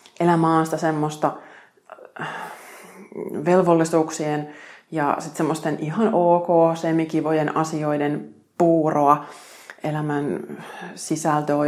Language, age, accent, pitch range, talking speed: Finnish, 20-39, native, 150-170 Hz, 80 wpm